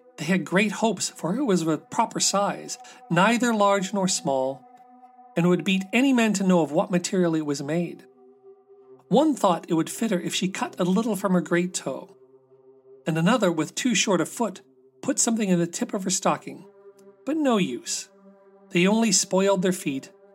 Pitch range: 165-215 Hz